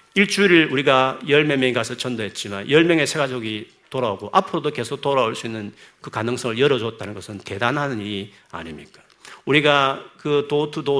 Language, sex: Korean, male